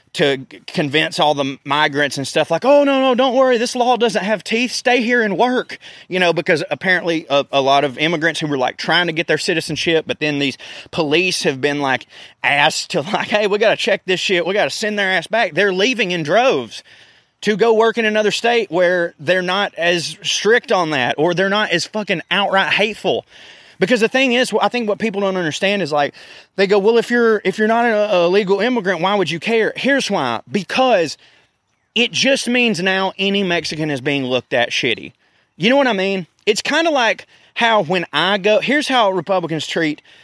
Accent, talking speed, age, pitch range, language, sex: American, 220 wpm, 20-39, 155-220 Hz, English, male